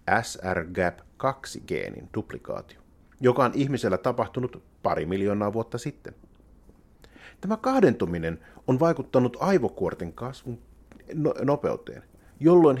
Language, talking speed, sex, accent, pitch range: Finnish, 85 wpm, male, native, 95-140 Hz